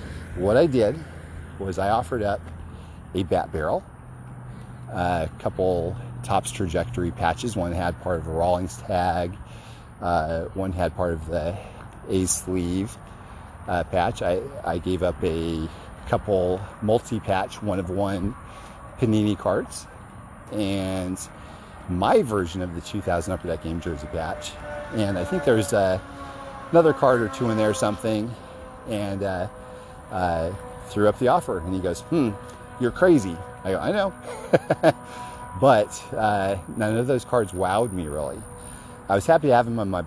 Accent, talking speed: American, 155 wpm